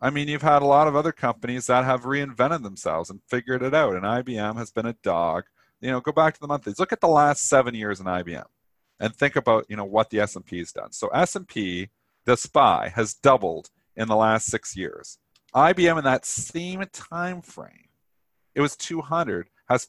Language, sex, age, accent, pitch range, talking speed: English, male, 40-59, American, 105-140 Hz, 210 wpm